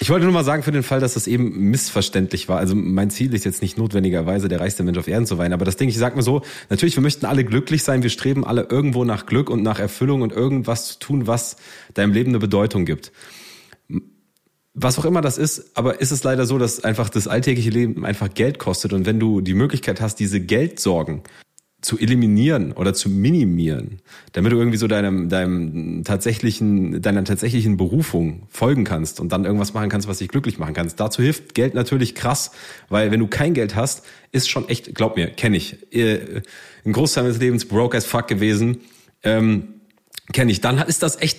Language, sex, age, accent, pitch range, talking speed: German, male, 30-49, German, 100-130 Hz, 215 wpm